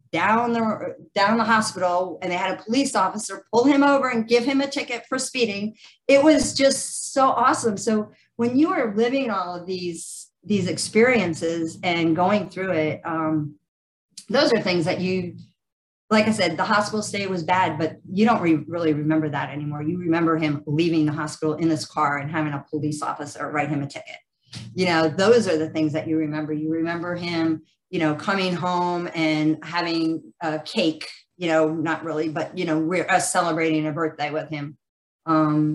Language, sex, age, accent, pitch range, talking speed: English, female, 40-59, American, 155-190 Hz, 195 wpm